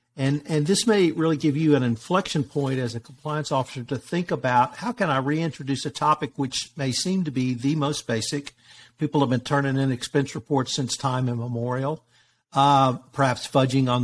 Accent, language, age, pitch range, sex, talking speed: American, English, 60-79, 125-150 Hz, male, 190 wpm